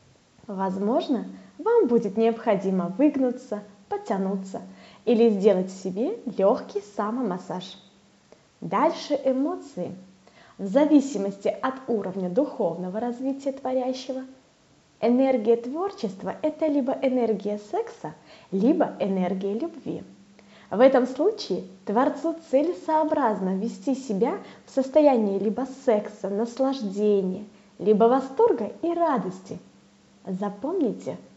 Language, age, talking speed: Russian, 20-39, 90 wpm